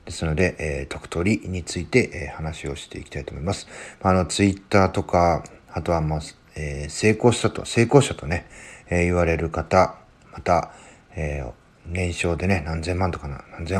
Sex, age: male, 40-59